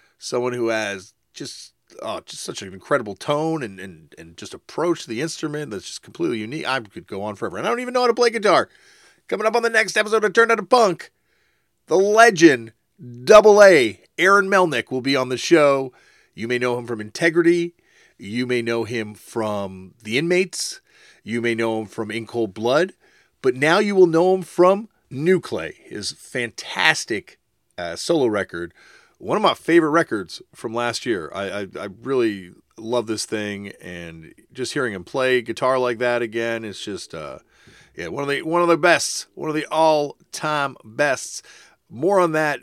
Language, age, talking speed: English, 40-59, 190 wpm